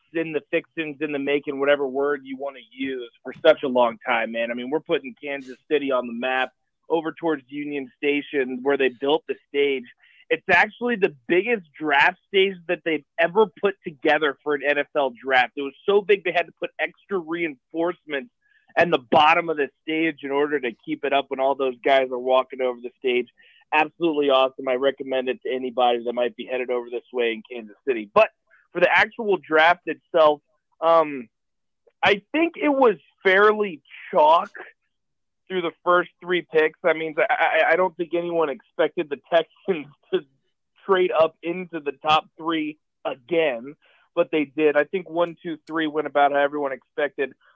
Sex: male